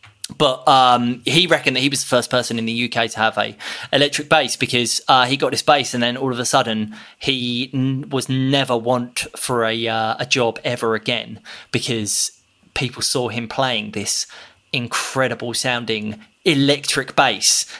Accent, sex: British, male